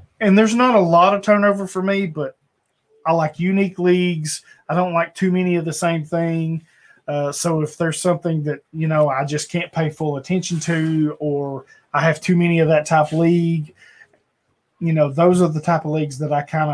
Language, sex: English, male